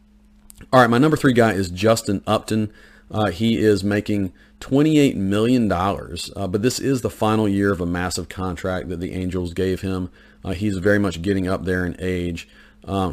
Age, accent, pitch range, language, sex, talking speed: 40-59, American, 90-105 Hz, English, male, 185 wpm